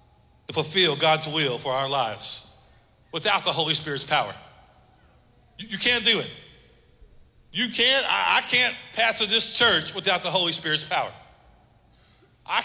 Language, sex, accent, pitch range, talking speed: English, male, American, 150-215 Hz, 145 wpm